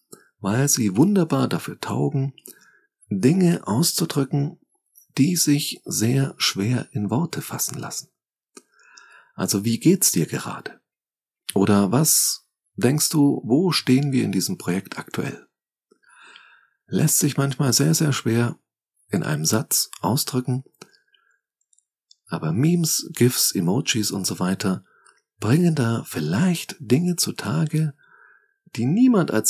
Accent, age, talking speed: German, 40-59, 115 wpm